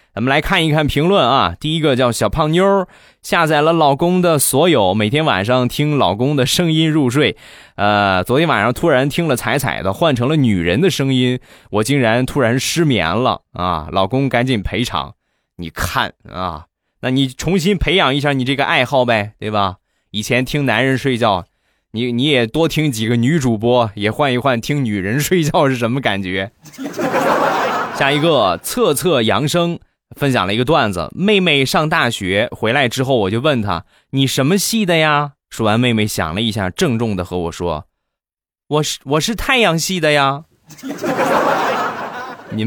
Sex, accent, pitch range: male, native, 115-155 Hz